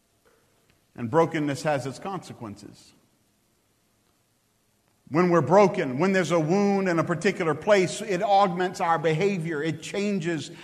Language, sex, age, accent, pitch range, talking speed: English, male, 50-69, American, 175-210 Hz, 125 wpm